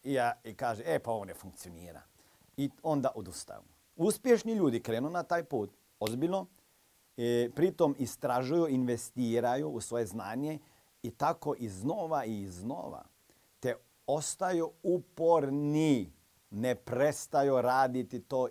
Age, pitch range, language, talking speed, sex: 50-69, 110-145 Hz, Croatian, 115 wpm, male